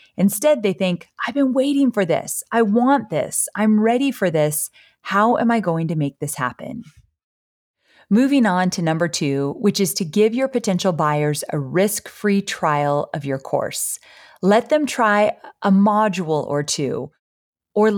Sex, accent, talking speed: female, American, 165 wpm